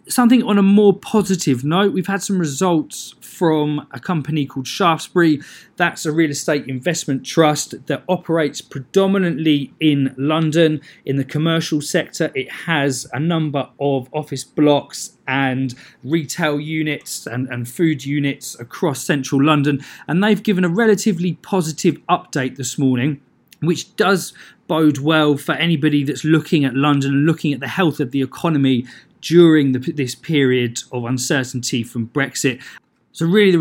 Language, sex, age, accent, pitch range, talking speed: English, male, 20-39, British, 135-165 Hz, 150 wpm